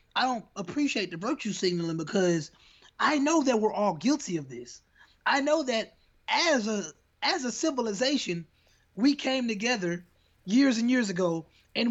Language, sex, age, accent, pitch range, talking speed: English, male, 20-39, American, 170-250 Hz, 155 wpm